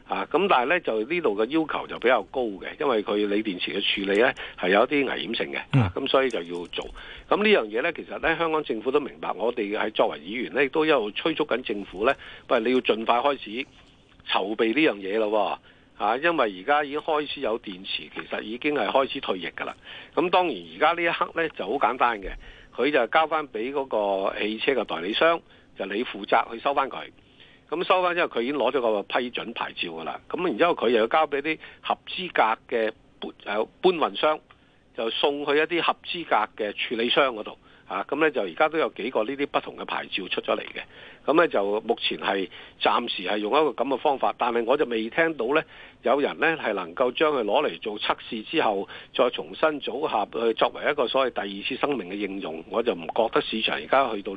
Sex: male